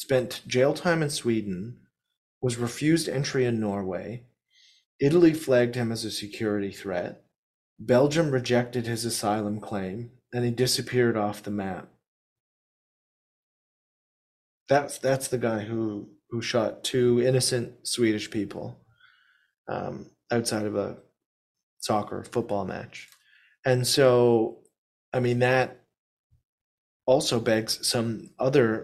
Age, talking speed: 30-49, 115 wpm